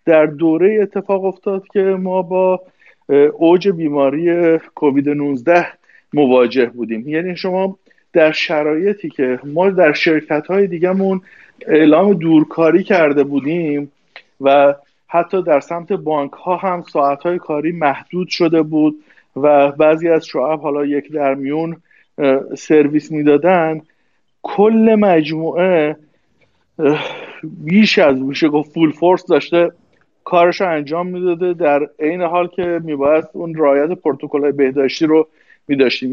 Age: 50-69